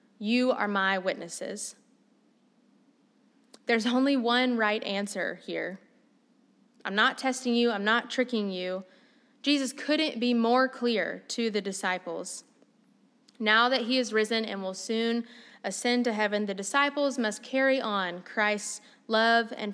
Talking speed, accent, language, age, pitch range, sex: 135 wpm, American, English, 20-39, 210-255 Hz, female